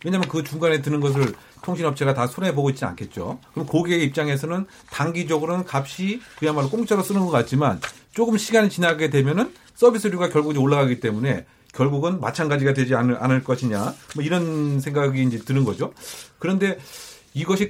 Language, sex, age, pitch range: Korean, male, 40-59, 135-175 Hz